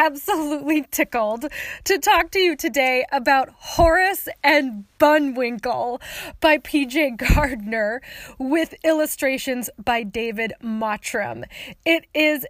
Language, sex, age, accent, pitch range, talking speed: English, female, 20-39, American, 265-335 Hz, 100 wpm